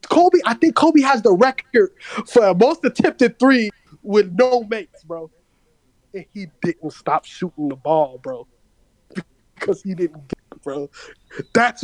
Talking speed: 145 wpm